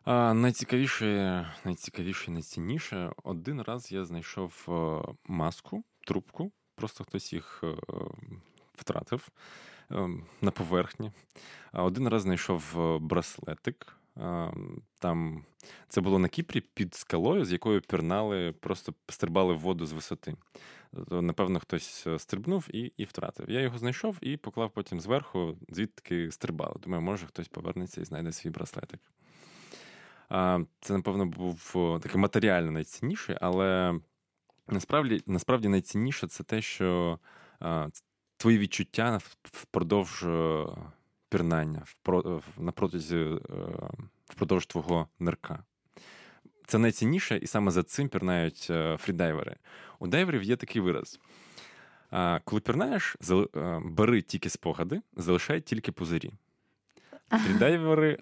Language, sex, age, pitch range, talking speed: Ukrainian, male, 20-39, 85-115 Hz, 105 wpm